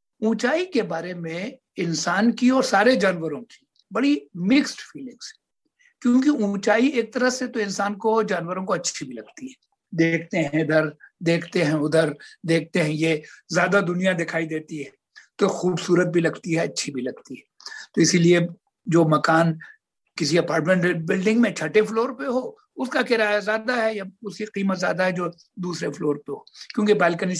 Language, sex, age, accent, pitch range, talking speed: Hindi, male, 60-79, native, 165-230 Hz, 170 wpm